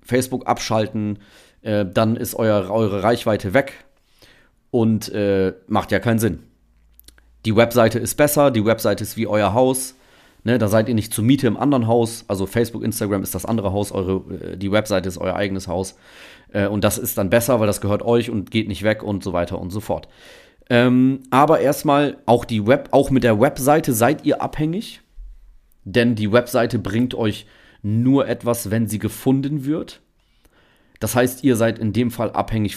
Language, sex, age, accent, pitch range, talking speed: German, male, 30-49, German, 100-125 Hz, 180 wpm